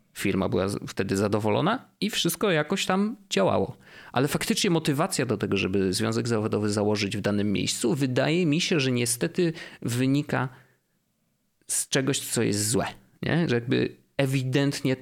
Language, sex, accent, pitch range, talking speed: Polish, male, native, 110-150 Hz, 140 wpm